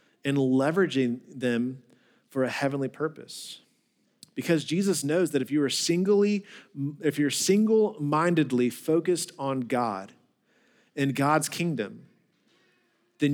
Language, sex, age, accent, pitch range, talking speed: English, male, 40-59, American, 125-160 Hz, 110 wpm